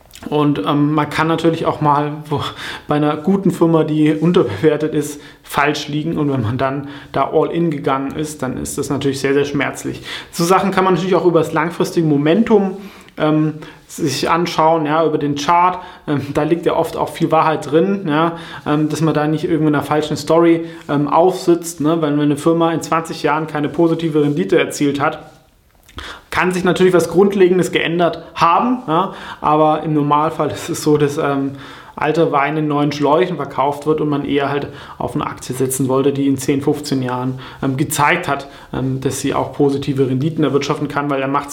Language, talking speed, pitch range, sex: German, 190 wpm, 145-170 Hz, male